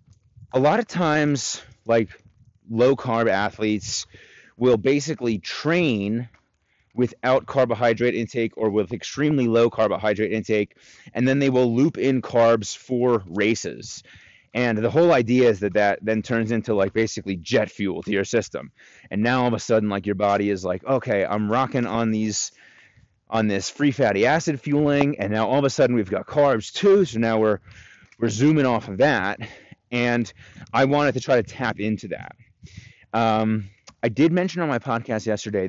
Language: English